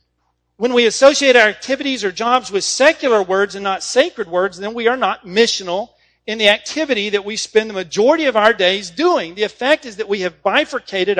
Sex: male